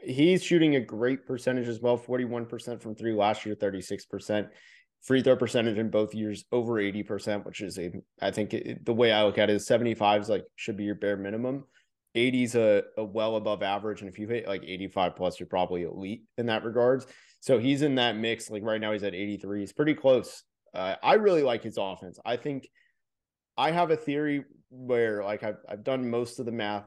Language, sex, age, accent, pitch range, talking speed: English, male, 20-39, American, 100-125 Hz, 215 wpm